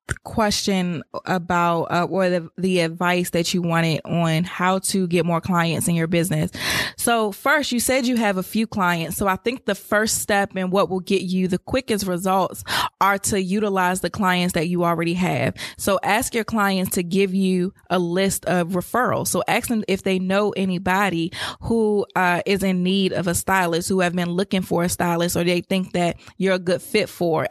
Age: 20-39